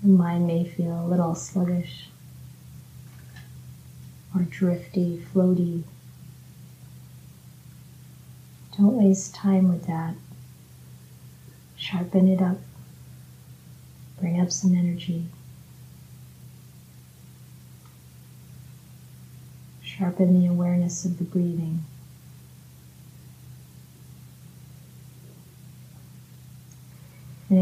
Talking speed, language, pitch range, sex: 65 wpm, English, 130-180 Hz, female